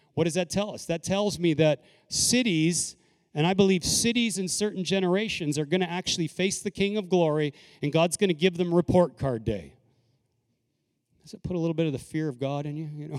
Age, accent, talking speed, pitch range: 40-59, American, 225 wpm, 130-165 Hz